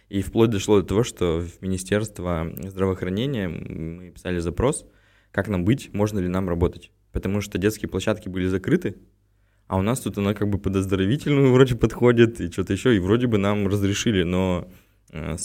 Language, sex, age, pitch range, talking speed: Russian, male, 20-39, 90-105 Hz, 175 wpm